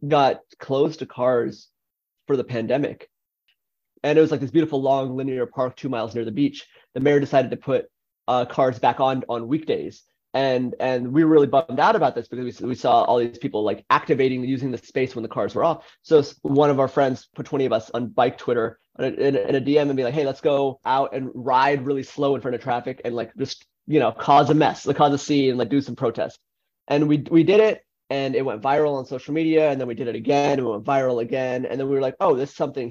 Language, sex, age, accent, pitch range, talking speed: English, male, 30-49, American, 125-145 Hz, 250 wpm